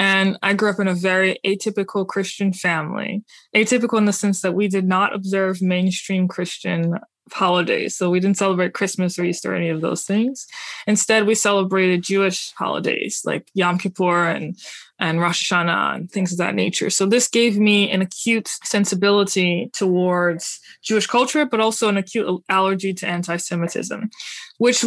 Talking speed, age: 165 wpm, 20-39